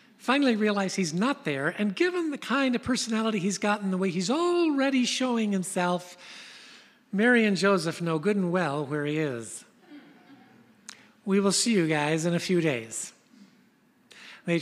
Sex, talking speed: male, 160 wpm